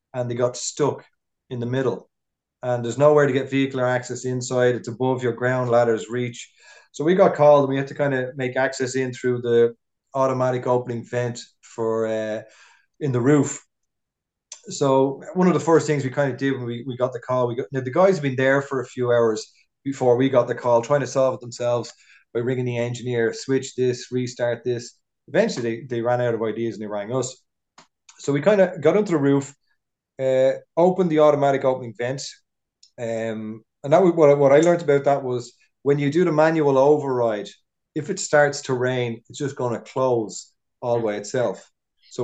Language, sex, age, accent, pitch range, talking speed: English, male, 20-39, Irish, 120-140 Hz, 210 wpm